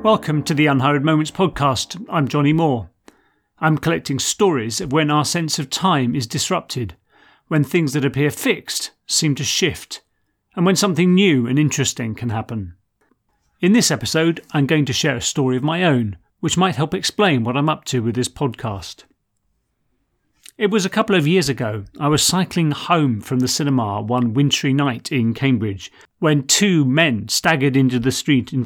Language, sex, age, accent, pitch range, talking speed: English, male, 40-59, British, 130-165 Hz, 180 wpm